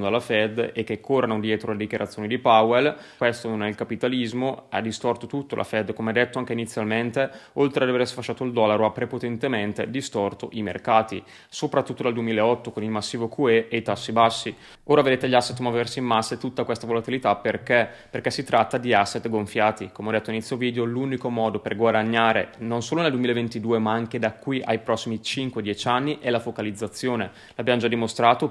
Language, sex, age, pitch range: Italian, male, 20-39, 110-125 Hz